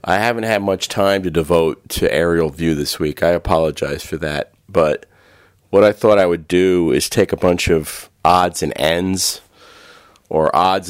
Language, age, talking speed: English, 40-59, 180 wpm